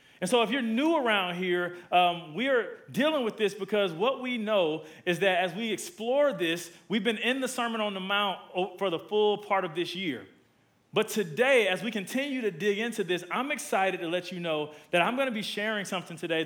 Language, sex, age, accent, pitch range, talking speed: English, male, 40-59, American, 165-215 Hz, 220 wpm